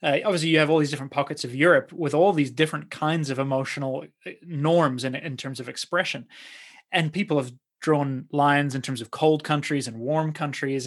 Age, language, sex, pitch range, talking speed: 30-49, English, male, 135-165 Hz, 200 wpm